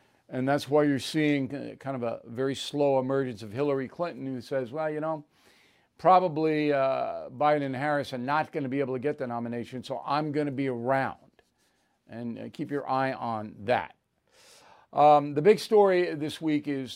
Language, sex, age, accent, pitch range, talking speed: English, male, 50-69, American, 135-165 Hz, 190 wpm